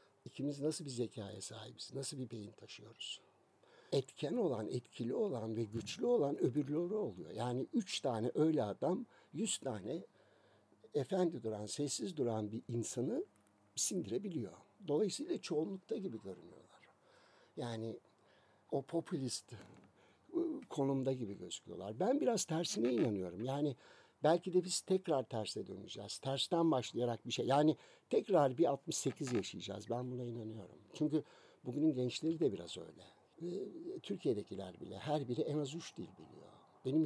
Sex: male